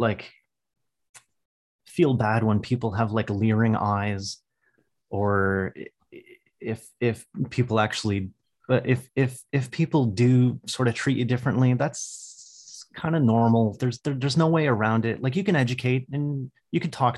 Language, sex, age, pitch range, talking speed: English, male, 30-49, 110-130 Hz, 150 wpm